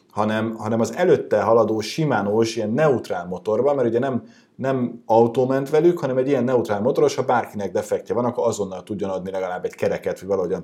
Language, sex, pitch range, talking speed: Hungarian, male, 100-155 Hz, 190 wpm